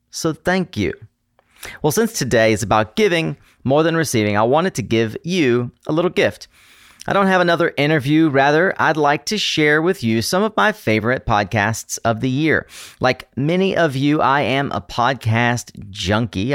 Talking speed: 180 wpm